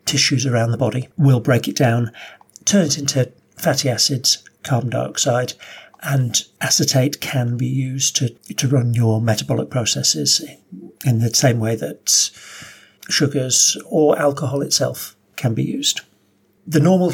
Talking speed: 140 wpm